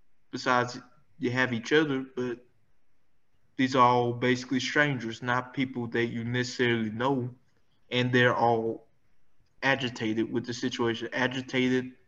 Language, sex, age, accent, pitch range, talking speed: English, male, 20-39, American, 120-135 Hz, 115 wpm